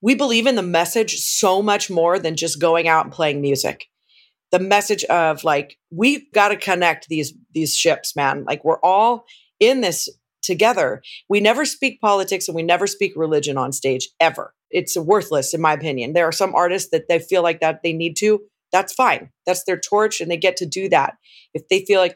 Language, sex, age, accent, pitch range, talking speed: English, female, 30-49, American, 160-200 Hz, 210 wpm